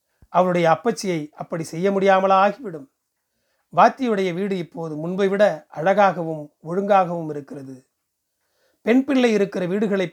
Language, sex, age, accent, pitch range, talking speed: Tamil, male, 40-59, native, 160-205 Hz, 105 wpm